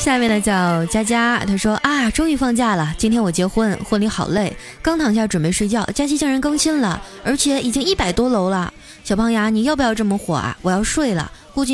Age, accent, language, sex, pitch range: 20-39, native, Chinese, female, 180-255 Hz